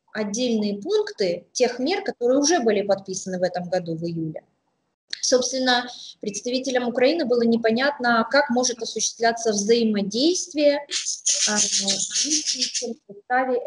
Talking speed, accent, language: 105 wpm, native, Russian